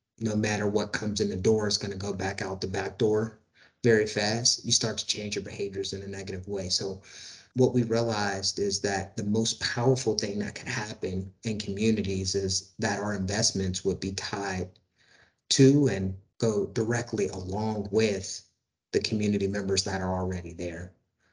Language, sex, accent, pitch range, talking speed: English, male, American, 95-105 Hz, 175 wpm